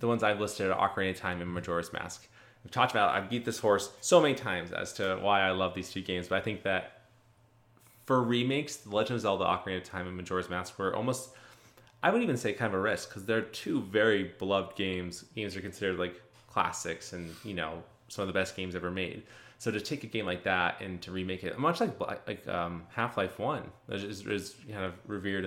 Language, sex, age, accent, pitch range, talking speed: English, male, 20-39, American, 90-115 Hz, 230 wpm